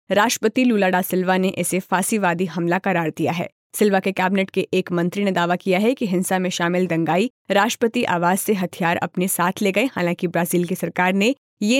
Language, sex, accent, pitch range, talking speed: Hindi, female, native, 180-210 Hz, 200 wpm